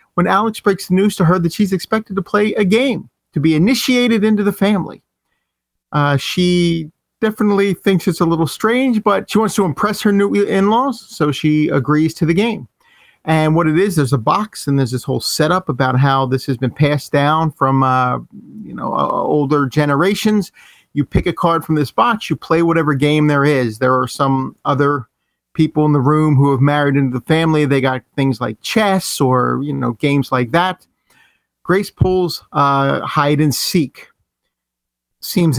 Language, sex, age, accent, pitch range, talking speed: English, male, 40-59, American, 140-190 Hz, 190 wpm